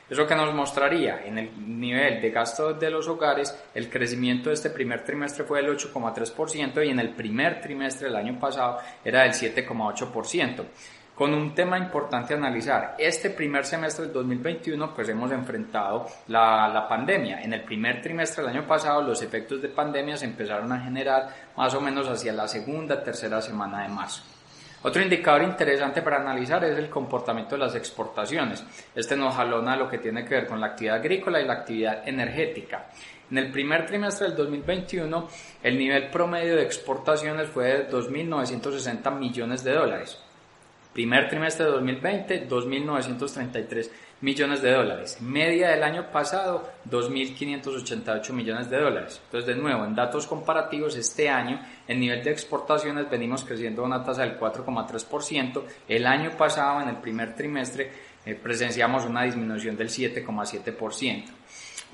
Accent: Colombian